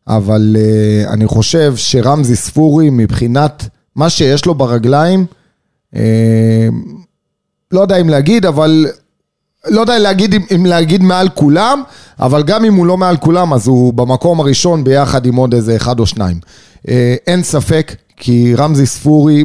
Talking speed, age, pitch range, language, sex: 140 wpm, 30-49, 120-155 Hz, Hebrew, male